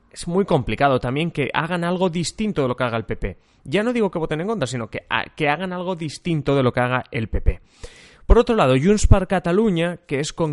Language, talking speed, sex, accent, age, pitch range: Spanish, 240 wpm, male, Spanish, 20-39, 120-170 Hz